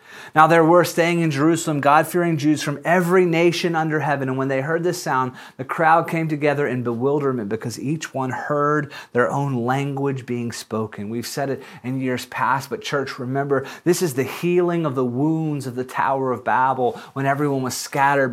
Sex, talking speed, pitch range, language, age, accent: male, 195 wpm, 145-185 Hz, English, 30-49, American